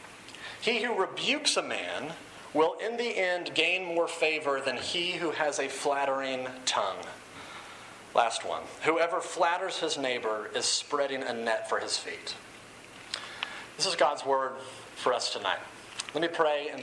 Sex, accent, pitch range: male, American, 130-165 Hz